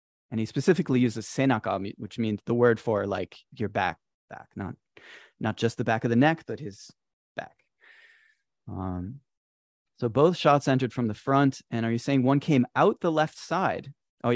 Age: 30-49